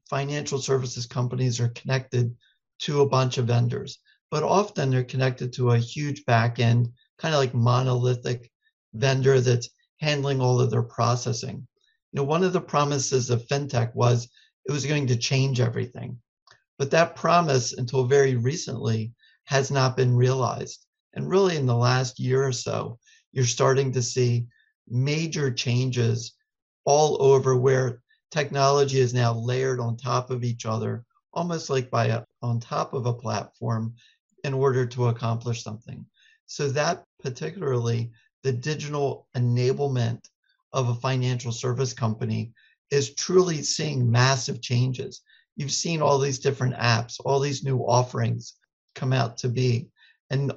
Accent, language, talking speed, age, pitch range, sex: American, English, 145 wpm, 50-69, 120-140 Hz, male